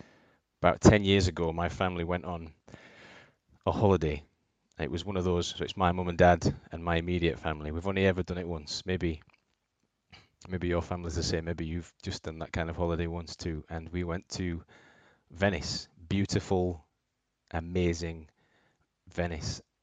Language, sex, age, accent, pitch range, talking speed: English, male, 20-39, British, 85-95 Hz, 165 wpm